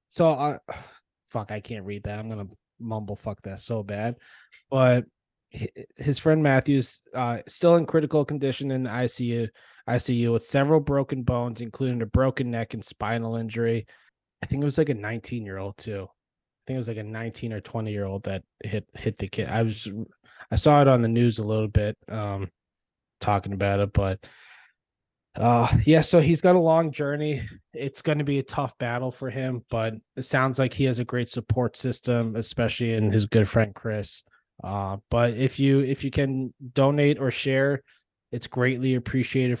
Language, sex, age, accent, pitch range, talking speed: English, male, 20-39, American, 105-130 Hz, 190 wpm